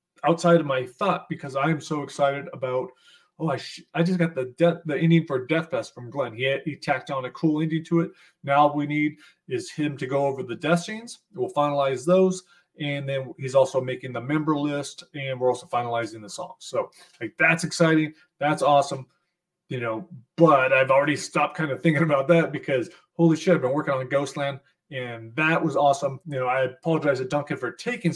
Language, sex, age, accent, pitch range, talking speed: English, male, 30-49, American, 140-175 Hz, 215 wpm